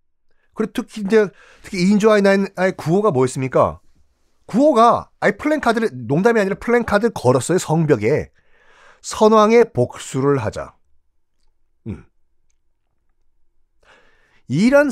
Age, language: 40-59, Korean